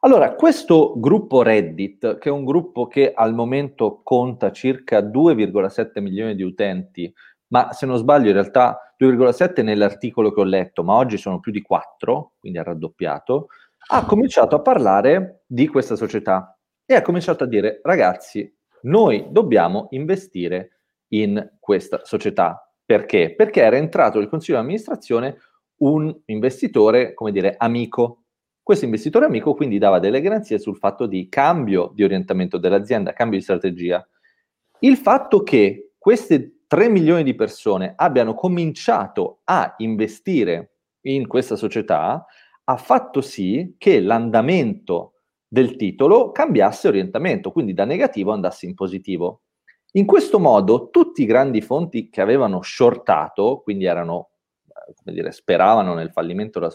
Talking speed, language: 140 wpm, Italian